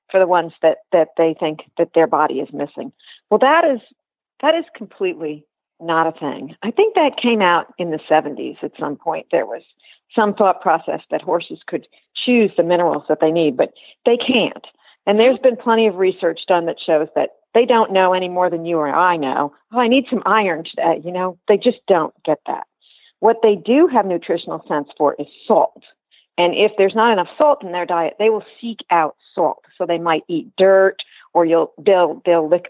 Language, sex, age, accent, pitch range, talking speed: English, female, 50-69, American, 165-220 Hz, 210 wpm